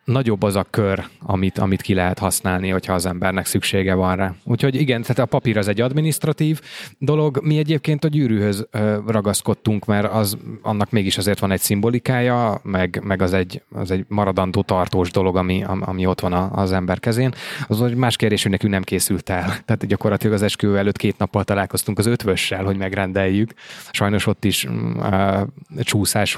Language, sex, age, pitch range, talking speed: Hungarian, male, 20-39, 95-110 Hz, 175 wpm